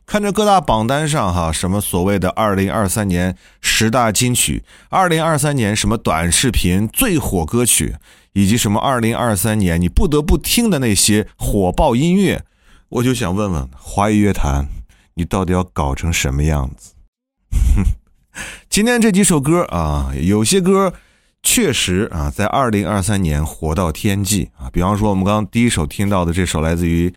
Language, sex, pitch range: Chinese, male, 85-130 Hz